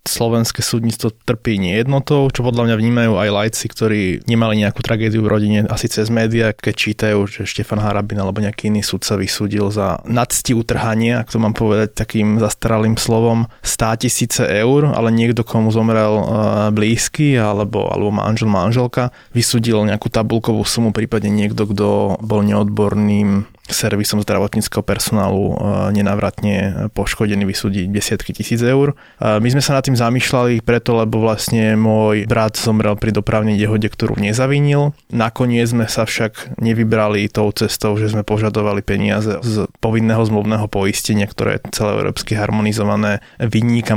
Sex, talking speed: male, 145 wpm